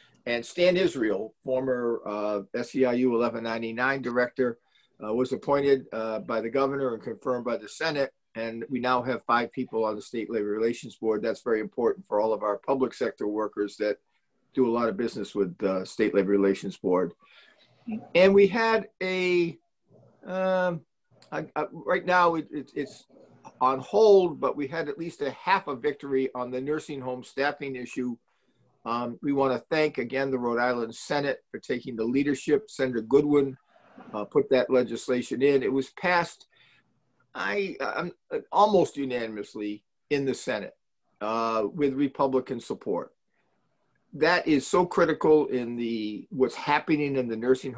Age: 50-69